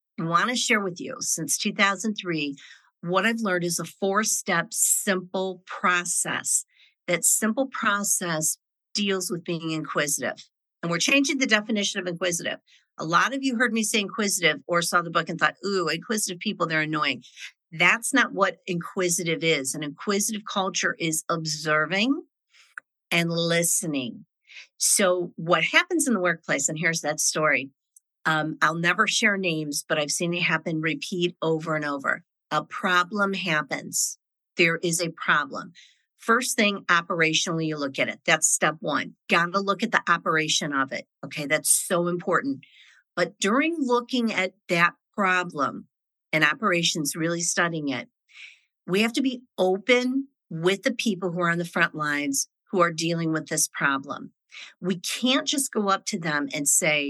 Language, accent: English, American